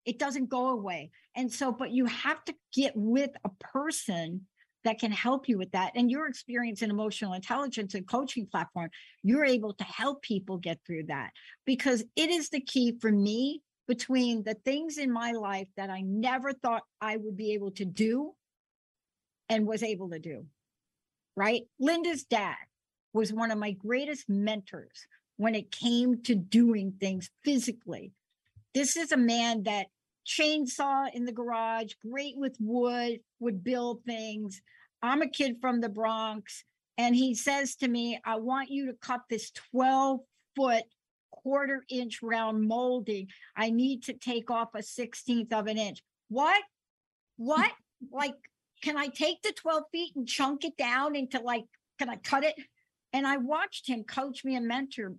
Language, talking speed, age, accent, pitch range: English, 165 wpm, 60-79, American, 215-270 Hz